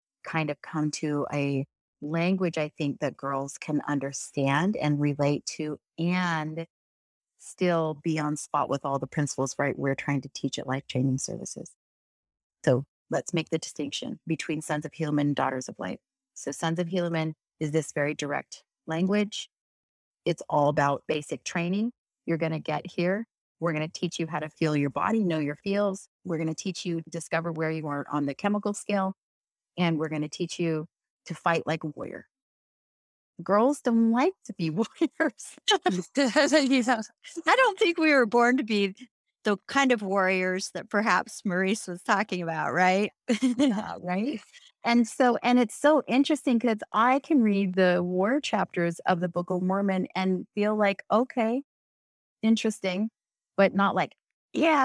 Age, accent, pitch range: 30-49, American, 155-225 Hz